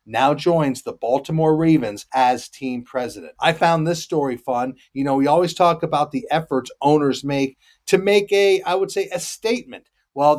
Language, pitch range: English, 145-185 Hz